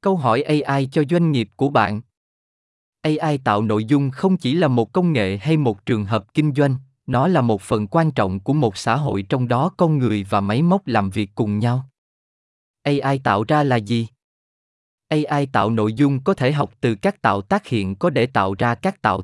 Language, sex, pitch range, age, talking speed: Vietnamese, male, 110-155 Hz, 20-39, 210 wpm